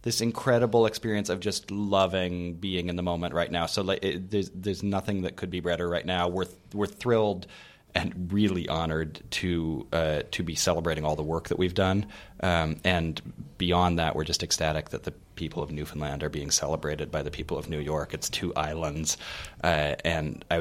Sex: male